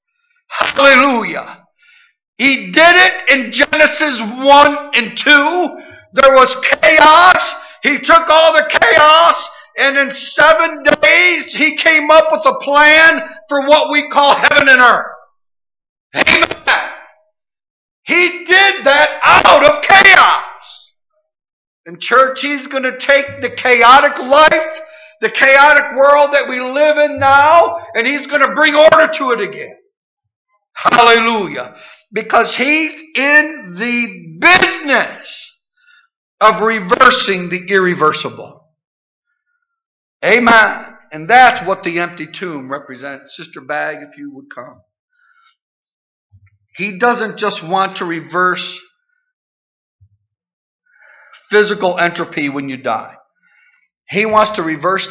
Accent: American